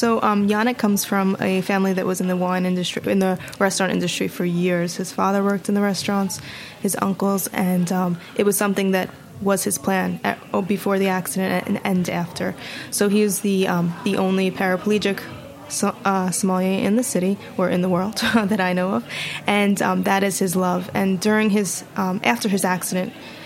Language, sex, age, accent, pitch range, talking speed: English, female, 20-39, American, 185-205 Hz, 190 wpm